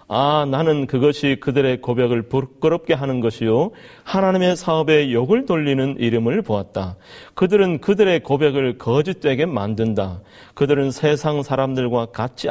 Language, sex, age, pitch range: Korean, male, 40-59, 115-160 Hz